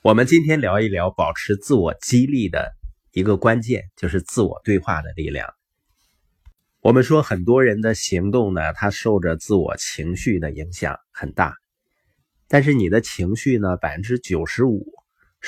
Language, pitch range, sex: Chinese, 95-130 Hz, male